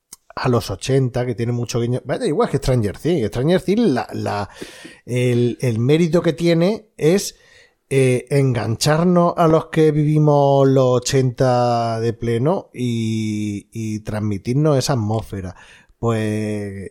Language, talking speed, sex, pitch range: Spanish, 140 wpm, male, 110-155 Hz